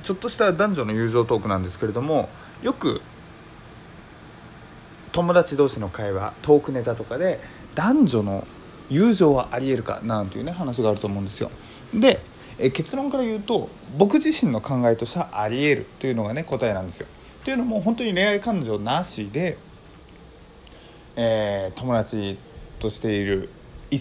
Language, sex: Japanese, male